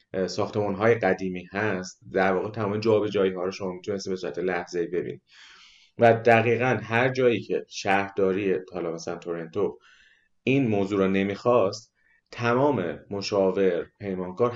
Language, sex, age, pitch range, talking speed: Persian, male, 30-49, 90-115 Hz, 130 wpm